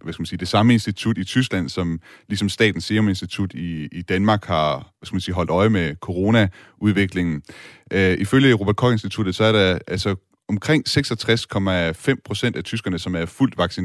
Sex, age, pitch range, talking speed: male, 30-49, 90-115 Hz, 130 wpm